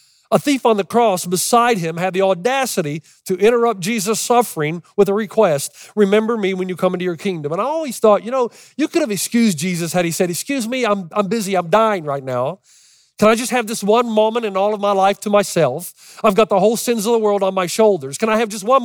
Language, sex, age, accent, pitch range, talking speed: English, male, 40-59, American, 155-215 Hz, 250 wpm